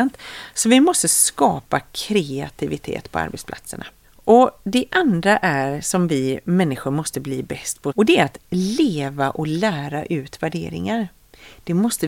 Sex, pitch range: female, 145-200 Hz